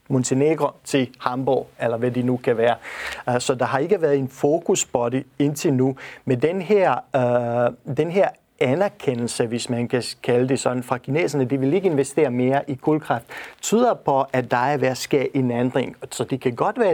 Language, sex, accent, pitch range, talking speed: Danish, male, native, 125-140 Hz, 190 wpm